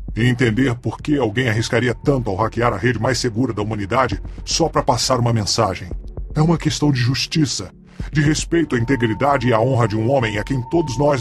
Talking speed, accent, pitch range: 210 wpm, Brazilian, 105-140 Hz